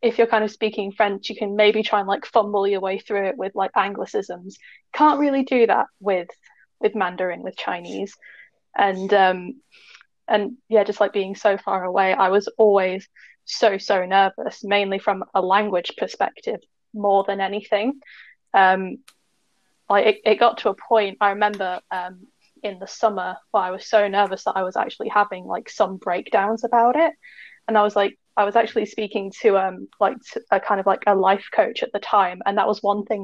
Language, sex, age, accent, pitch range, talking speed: English, female, 10-29, British, 190-220 Hz, 195 wpm